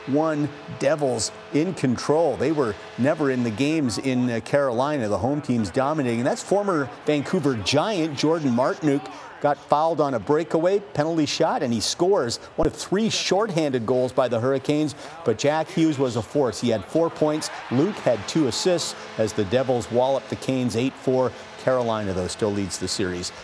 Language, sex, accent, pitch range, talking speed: English, male, American, 115-150 Hz, 175 wpm